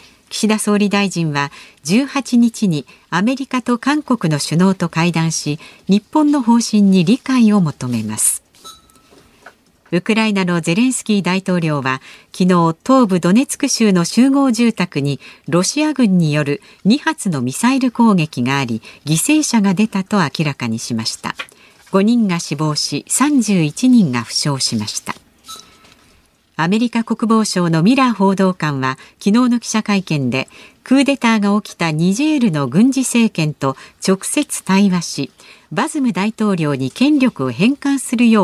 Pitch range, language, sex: 155-235 Hz, Japanese, female